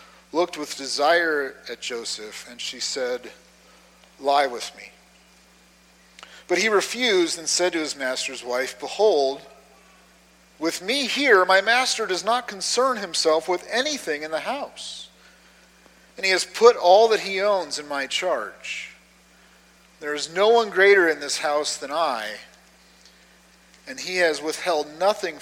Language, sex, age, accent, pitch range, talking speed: English, male, 40-59, American, 125-185 Hz, 145 wpm